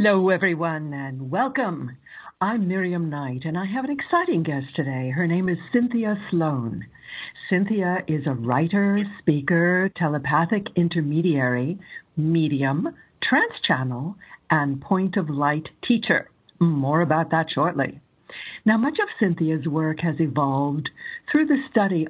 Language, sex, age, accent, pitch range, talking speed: English, female, 60-79, American, 145-190 Hz, 130 wpm